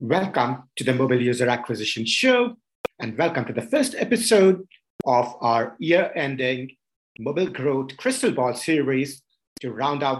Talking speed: 145 wpm